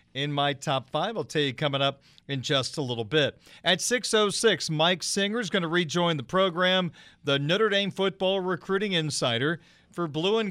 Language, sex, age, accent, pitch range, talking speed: English, male, 40-59, American, 140-180 Hz, 190 wpm